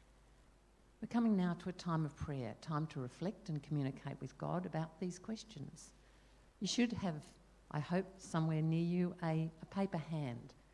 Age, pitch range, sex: 50-69, 140-175 Hz, female